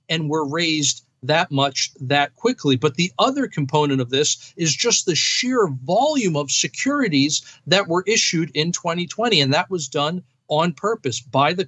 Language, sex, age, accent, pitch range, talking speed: English, male, 50-69, American, 140-180 Hz, 170 wpm